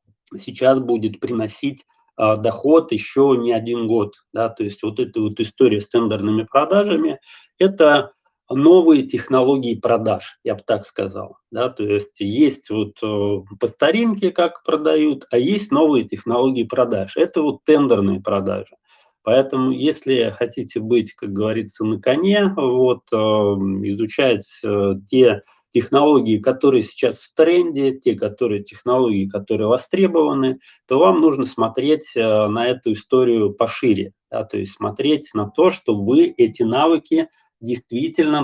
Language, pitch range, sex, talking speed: Russian, 110-155 Hz, male, 130 wpm